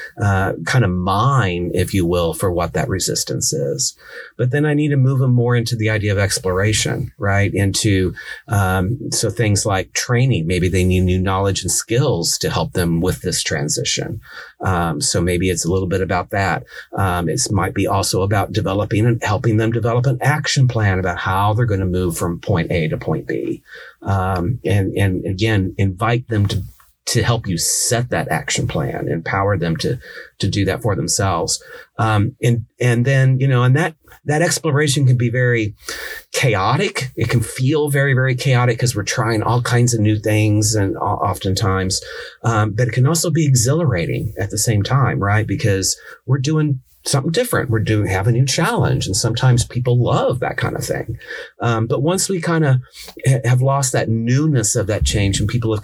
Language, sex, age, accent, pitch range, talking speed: English, male, 40-59, American, 100-125 Hz, 190 wpm